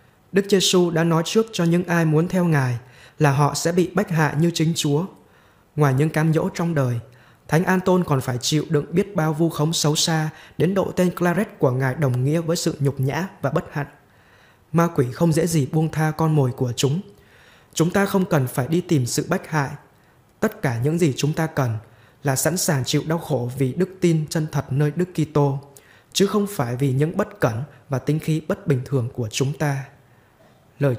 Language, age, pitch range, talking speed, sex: Vietnamese, 20-39, 135-165 Hz, 215 wpm, male